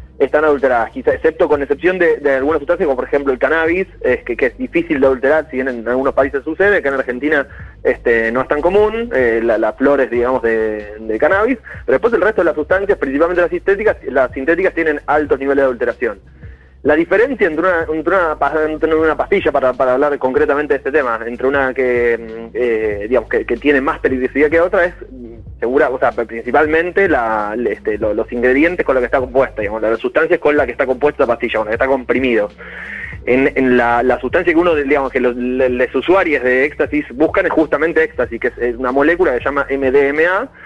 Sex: male